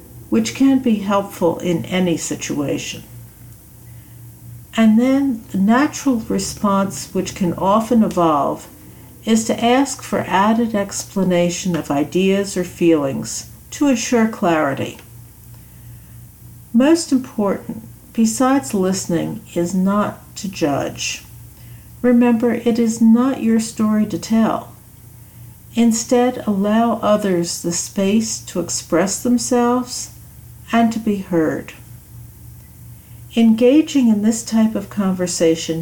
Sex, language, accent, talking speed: female, English, American, 105 wpm